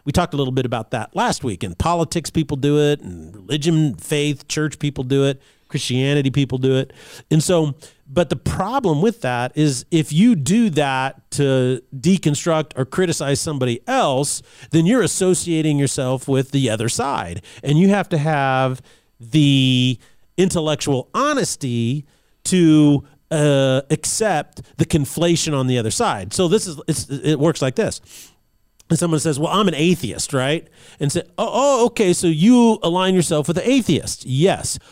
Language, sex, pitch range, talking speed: English, male, 130-175 Hz, 165 wpm